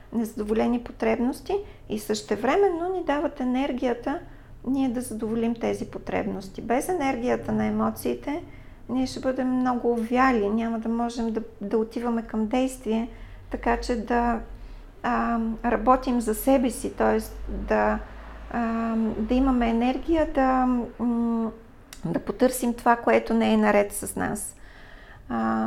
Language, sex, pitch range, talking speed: Bulgarian, female, 205-245 Hz, 130 wpm